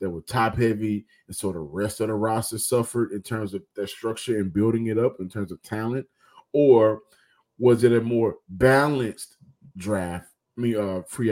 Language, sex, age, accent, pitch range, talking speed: English, male, 20-39, American, 105-130 Hz, 190 wpm